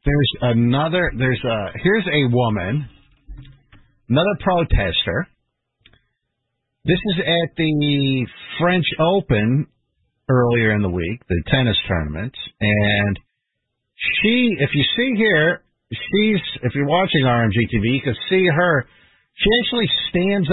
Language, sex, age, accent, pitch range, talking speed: English, male, 50-69, American, 120-180 Hz, 120 wpm